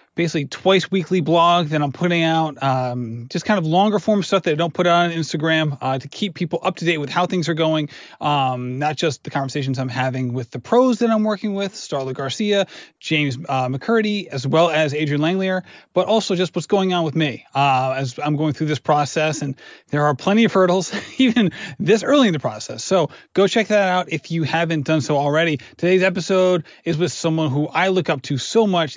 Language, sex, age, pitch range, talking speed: English, male, 30-49, 145-185 Hz, 225 wpm